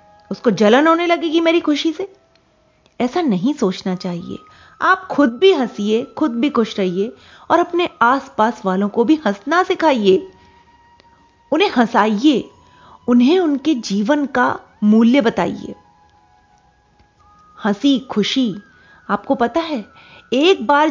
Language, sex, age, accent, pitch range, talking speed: Hindi, female, 30-49, native, 205-310 Hz, 120 wpm